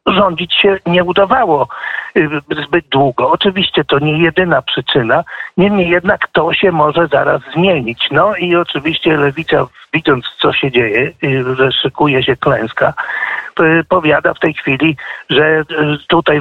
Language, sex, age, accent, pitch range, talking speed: Polish, male, 50-69, native, 150-185 Hz, 130 wpm